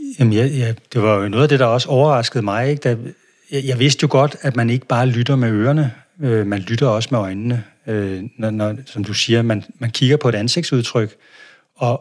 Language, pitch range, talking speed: Danish, 110-140 Hz, 230 wpm